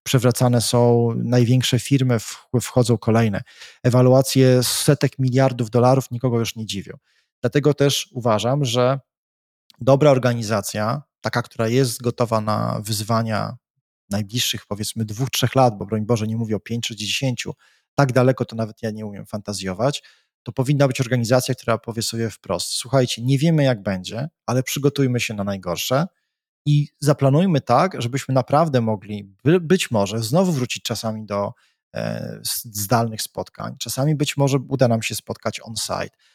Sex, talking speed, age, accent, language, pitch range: male, 150 wpm, 20-39, native, Polish, 110-135 Hz